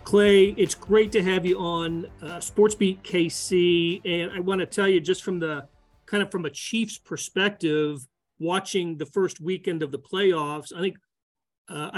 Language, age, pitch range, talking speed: English, 40-59, 145-180 Hz, 180 wpm